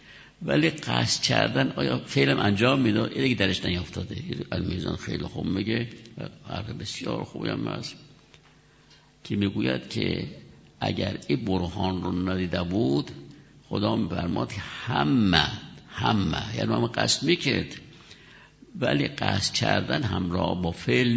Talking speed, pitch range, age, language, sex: 125 wpm, 90-130 Hz, 60-79, Persian, male